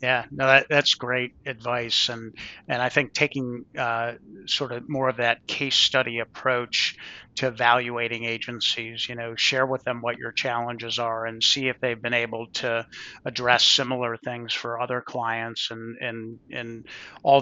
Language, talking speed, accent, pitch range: English, 170 wpm, American, 120-140 Hz